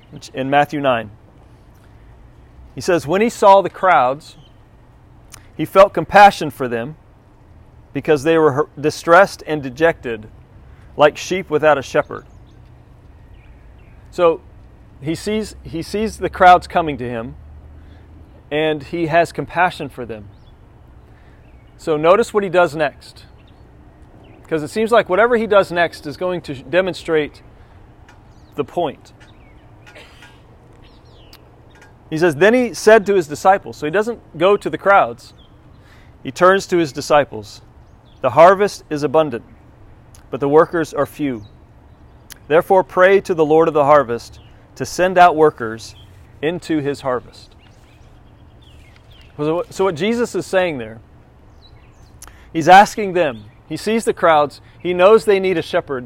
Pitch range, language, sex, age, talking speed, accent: 115-180 Hz, English, male, 40-59, 135 wpm, American